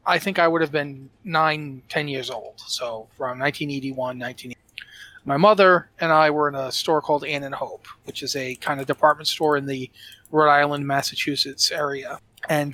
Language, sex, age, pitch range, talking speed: English, male, 30-49, 140-170 Hz, 190 wpm